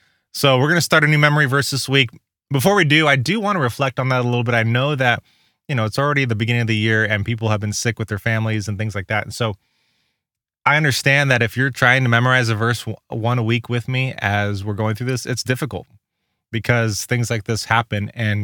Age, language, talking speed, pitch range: 20-39, English, 255 wpm, 105-135 Hz